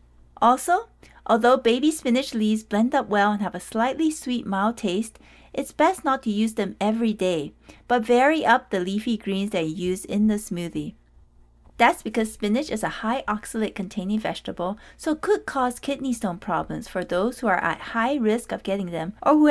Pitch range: 185-255 Hz